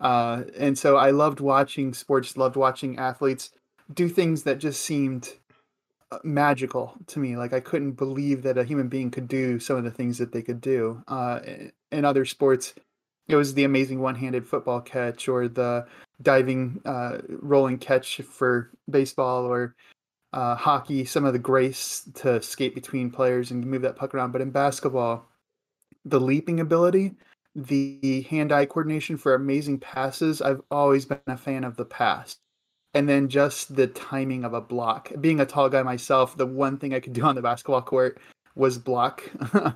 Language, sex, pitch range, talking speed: English, male, 125-140 Hz, 175 wpm